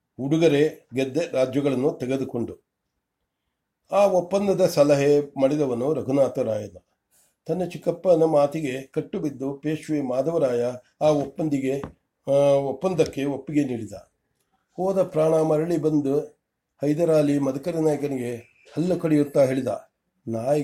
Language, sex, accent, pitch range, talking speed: English, male, Indian, 135-165 Hz, 110 wpm